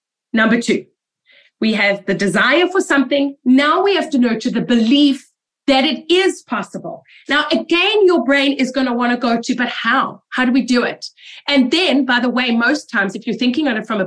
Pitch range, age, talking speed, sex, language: 230-295 Hz, 30-49, 220 wpm, female, English